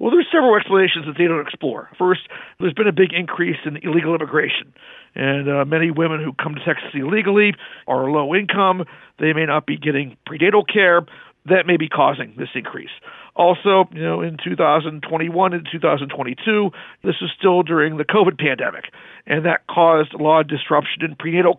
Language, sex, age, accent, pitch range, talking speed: English, male, 50-69, American, 160-200 Hz, 180 wpm